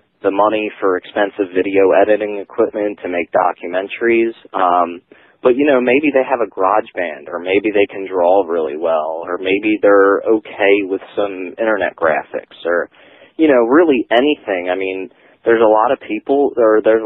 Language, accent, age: English, American, 30-49